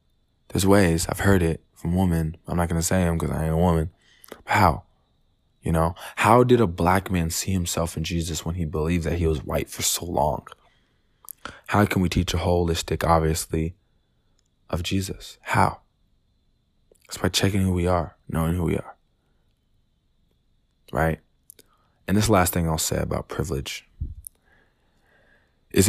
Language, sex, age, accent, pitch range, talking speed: English, male, 20-39, American, 80-90 Hz, 160 wpm